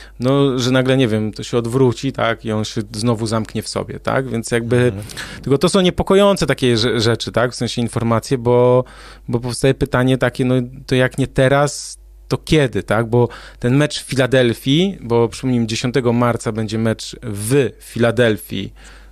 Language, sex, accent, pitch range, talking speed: Polish, male, native, 115-155 Hz, 175 wpm